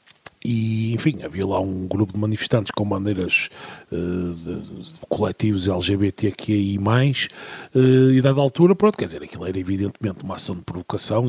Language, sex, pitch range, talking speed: Portuguese, male, 100-140 Hz, 145 wpm